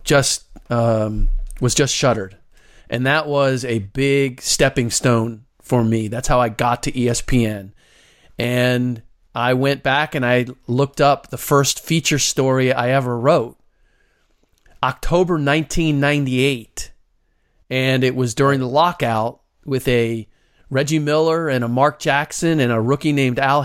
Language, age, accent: English, 40-59, American